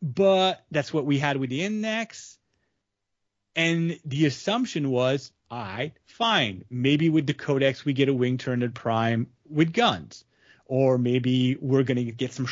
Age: 30-49